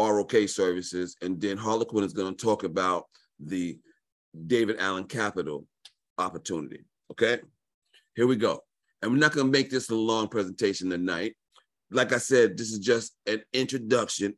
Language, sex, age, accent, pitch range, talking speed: English, male, 40-59, American, 90-120 Hz, 160 wpm